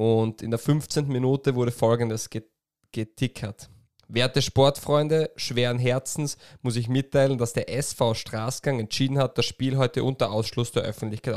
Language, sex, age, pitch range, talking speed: German, male, 20-39, 115-140 Hz, 150 wpm